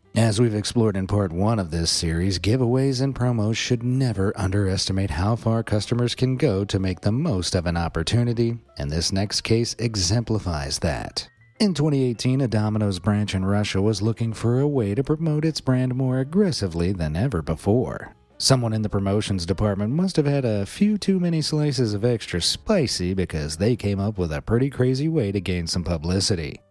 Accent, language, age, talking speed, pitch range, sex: American, English, 40-59, 185 wpm, 95-130 Hz, male